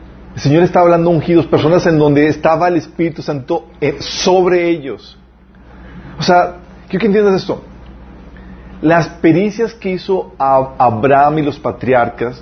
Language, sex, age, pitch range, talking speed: Spanish, male, 40-59, 95-155 Hz, 145 wpm